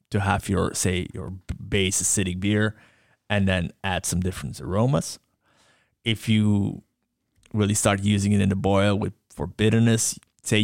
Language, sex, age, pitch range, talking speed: English, male, 20-39, 95-115 Hz, 150 wpm